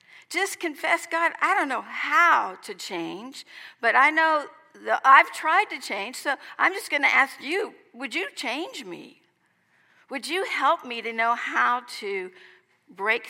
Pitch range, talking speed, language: 225-300 Hz, 165 wpm, English